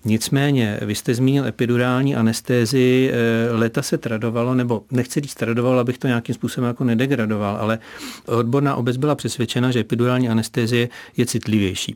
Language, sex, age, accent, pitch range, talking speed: Czech, male, 40-59, native, 110-125 Hz, 145 wpm